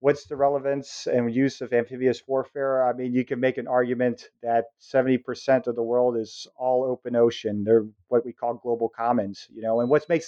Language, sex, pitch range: English, male, 115-135 Hz